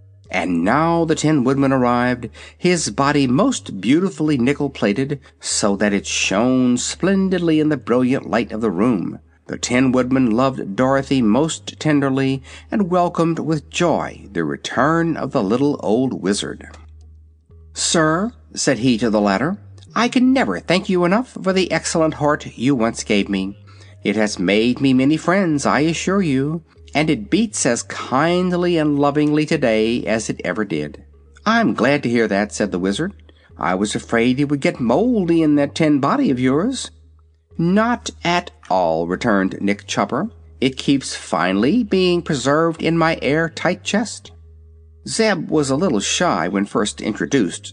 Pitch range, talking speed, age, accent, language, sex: 100-165 Hz, 160 wpm, 60-79, American, English, male